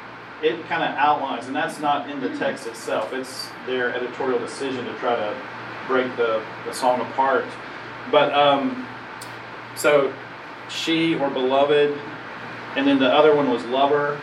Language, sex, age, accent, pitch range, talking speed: English, male, 40-59, American, 125-150 Hz, 150 wpm